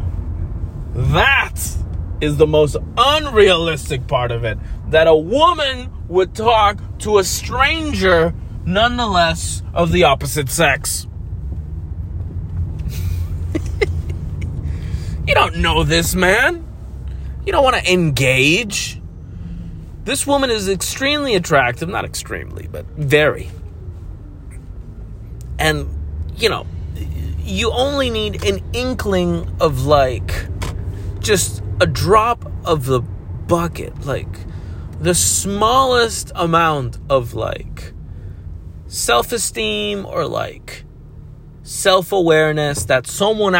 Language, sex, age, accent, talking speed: English, male, 30-49, American, 95 wpm